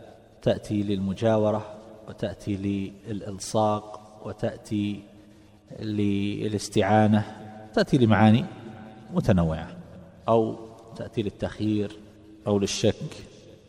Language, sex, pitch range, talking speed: Arabic, male, 105-130 Hz, 60 wpm